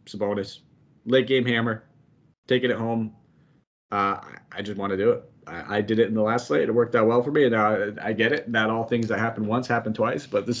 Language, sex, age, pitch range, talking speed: English, male, 30-49, 105-120 Hz, 260 wpm